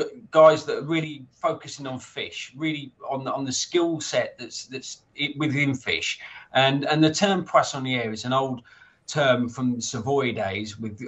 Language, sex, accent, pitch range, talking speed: English, male, British, 120-145 Hz, 175 wpm